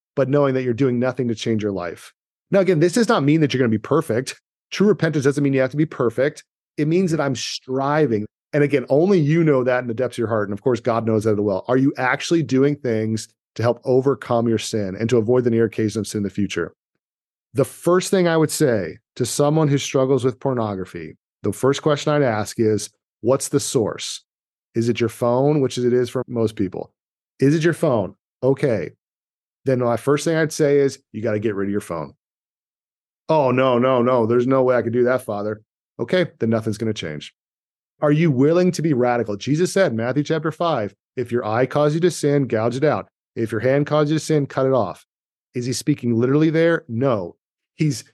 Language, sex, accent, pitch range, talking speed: English, male, American, 115-150 Hz, 230 wpm